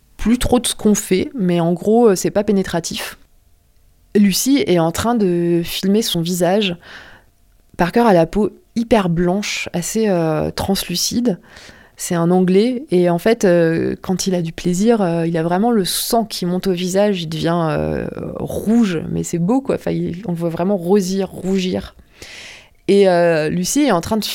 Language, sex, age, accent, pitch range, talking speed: French, female, 20-39, French, 175-225 Hz, 180 wpm